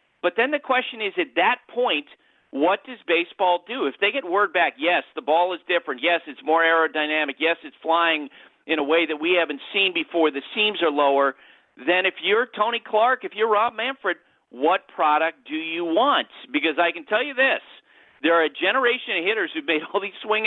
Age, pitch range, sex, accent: 50-69, 165-260 Hz, male, American